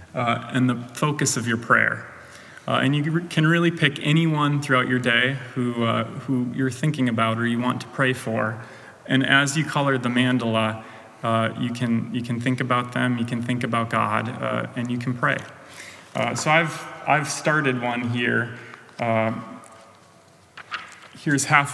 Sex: male